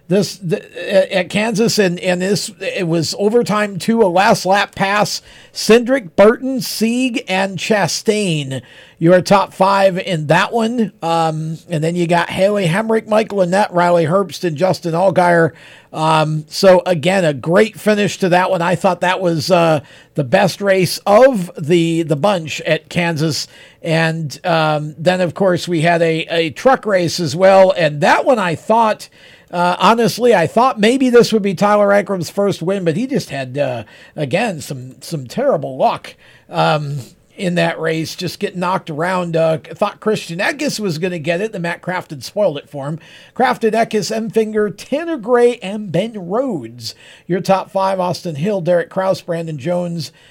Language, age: English, 50-69